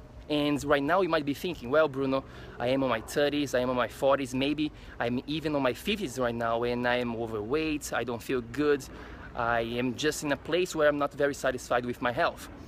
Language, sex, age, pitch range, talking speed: English, male, 20-39, 130-170 Hz, 215 wpm